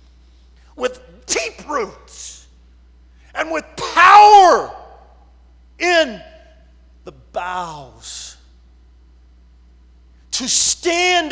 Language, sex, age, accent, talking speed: English, male, 40-59, American, 60 wpm